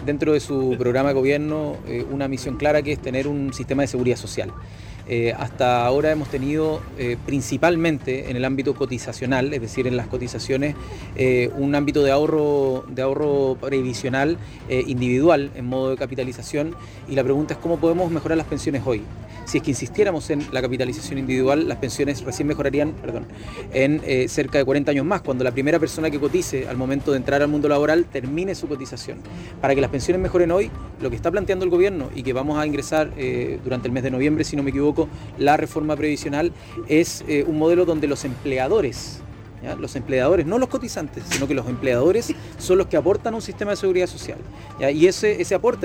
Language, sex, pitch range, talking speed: Spanish, male, 130-170 Hz, 195 wpm